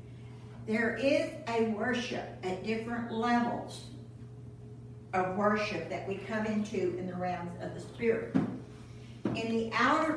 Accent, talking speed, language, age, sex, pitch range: American, 130 wpm, English, 60-79, female, 215-260 Hz